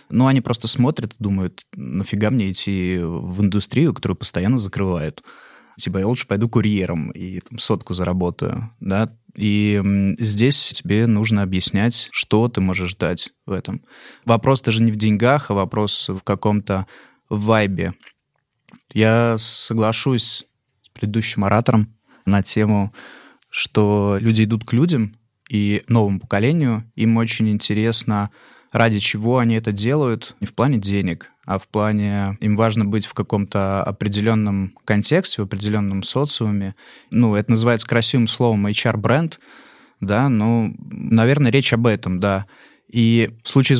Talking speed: 140 wpm